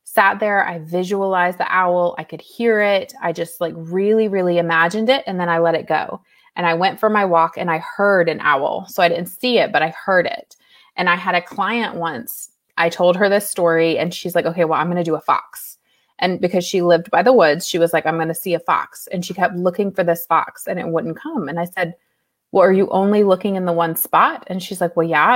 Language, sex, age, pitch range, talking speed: English, female, 20-39, 175-210 Hz, 260 wpm